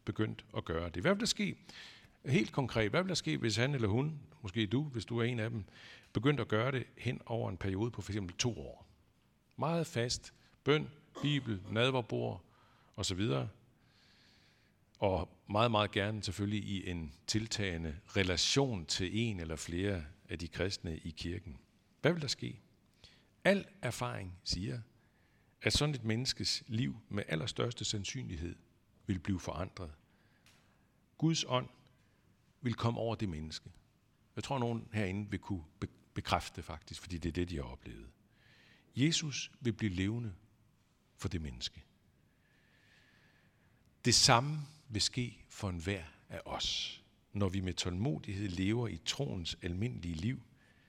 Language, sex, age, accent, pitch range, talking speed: Danish, male, 60-79, native, 90-120 Hz, 155 wpm